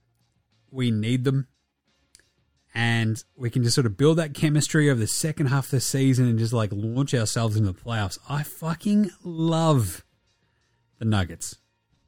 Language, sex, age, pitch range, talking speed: English, male, 30-49, 115-160 Hz, 160 wpm